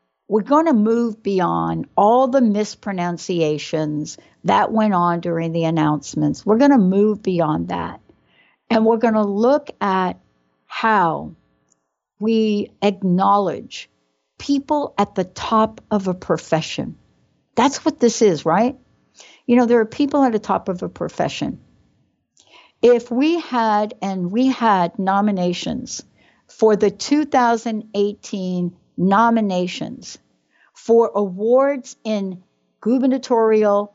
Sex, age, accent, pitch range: female, 60-79, American, 185-235 Hz